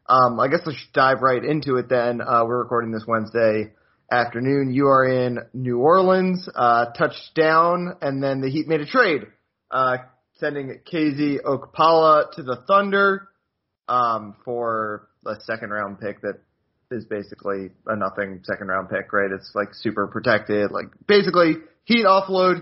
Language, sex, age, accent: English, male, 20-39, American